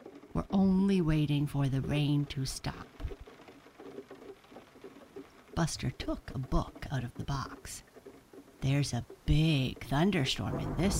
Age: 50-69